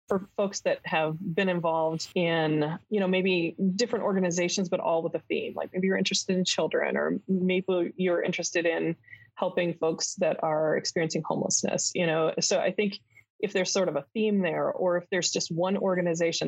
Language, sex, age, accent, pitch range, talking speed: English, female, 20-39, American, 160-190 Hz, 190 wpm